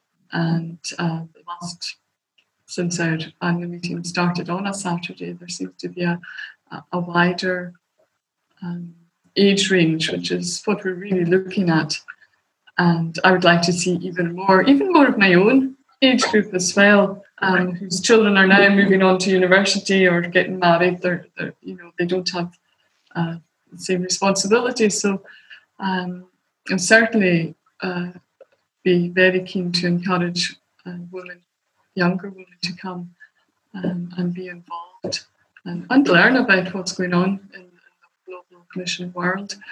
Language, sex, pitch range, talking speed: English, female, 175-195 Hz, 150 wpm